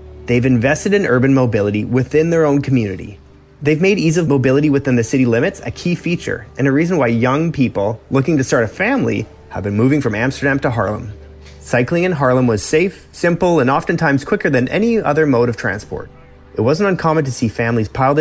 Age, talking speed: 30-49, 200 wpm